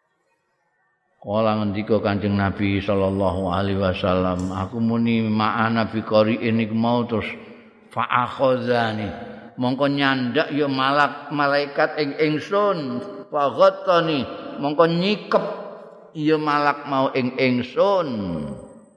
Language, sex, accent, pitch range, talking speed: Indonesian, male, native, 110-145 Hz, 110 wpm